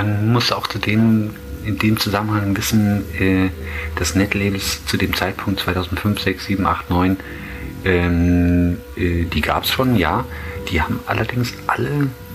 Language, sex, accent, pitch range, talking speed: German, male, German, 85-105 Hz, 150 wpm